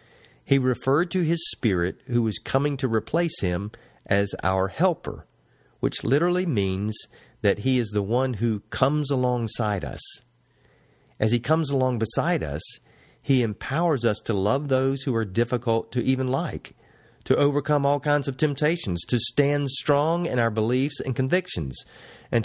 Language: English